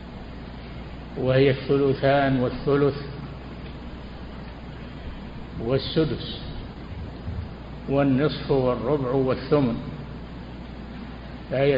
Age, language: 60-79, Arabic